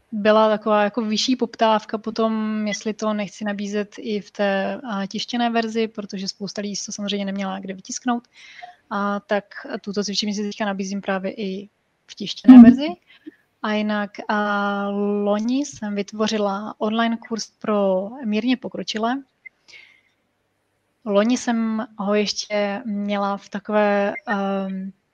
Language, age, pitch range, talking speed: Czech, 20-39, 200-225 Hz, 130 wpm